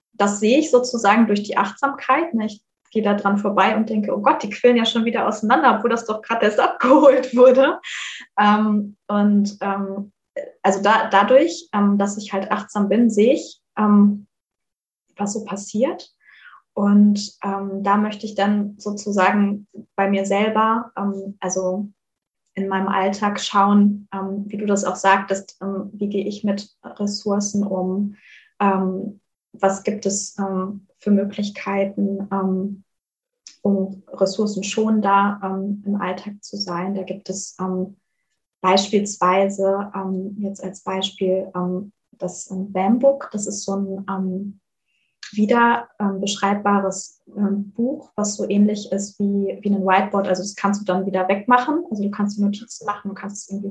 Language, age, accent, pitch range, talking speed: German, 20-39, German, 195-215 Hz, 150 wpm